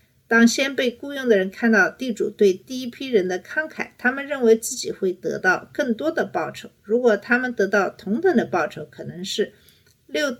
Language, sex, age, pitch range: Chinese, female, 50-69, 205-265 Hz